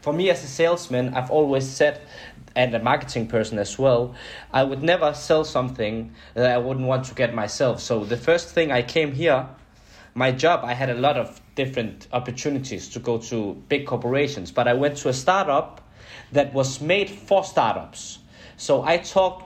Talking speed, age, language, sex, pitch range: 190 wpm, 20-39, English, male, 125-150 Hz